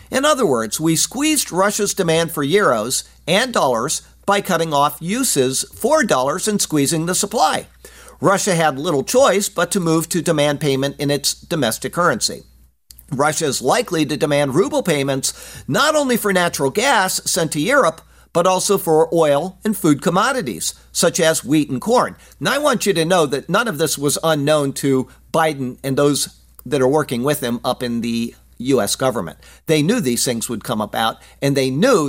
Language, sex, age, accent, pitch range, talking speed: English, male, 50-69, American, 130-185 Hz, 185 wpm